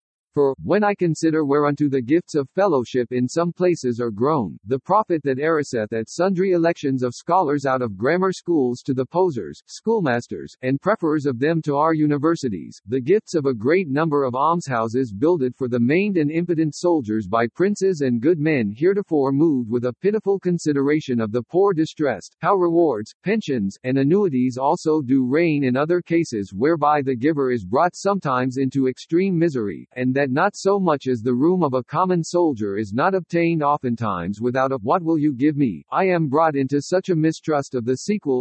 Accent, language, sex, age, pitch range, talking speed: American, English, male, 50-69, 130-175 Hz, 190 wpm